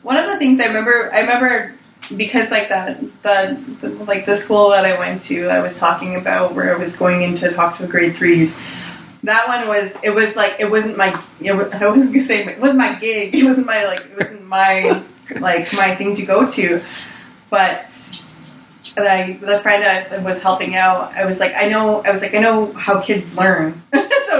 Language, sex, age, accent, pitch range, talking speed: English, female, 20-39, American, 185-220 Hz, 225 wpm